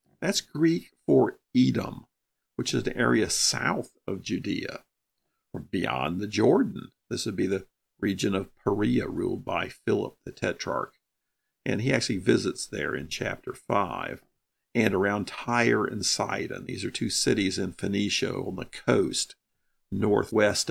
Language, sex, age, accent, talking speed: English, male, 50-69, American, 145 wpm